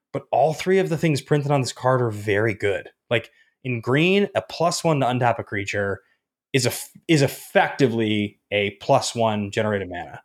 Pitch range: 110-140 Hz